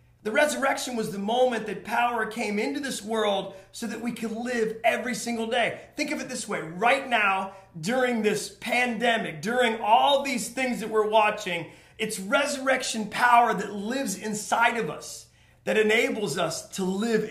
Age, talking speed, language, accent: 30-49, 170 wpm, English, American